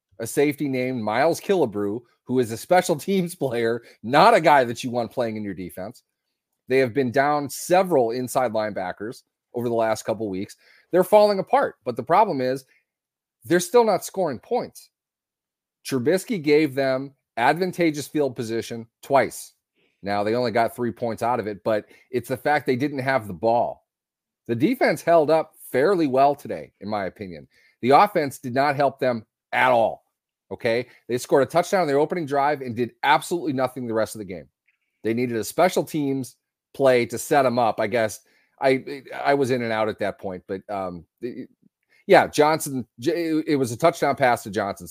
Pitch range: 115-155 Hz